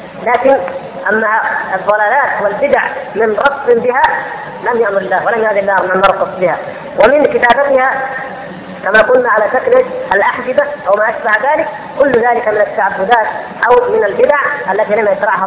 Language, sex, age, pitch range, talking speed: Arabic, female, 20-39, 210-280 Hz, 140 wpm